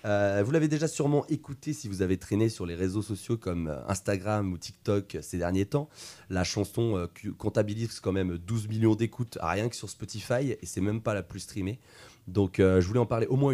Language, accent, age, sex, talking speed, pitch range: French, French, 30-49, male, 215 wpm, 95-125 Hz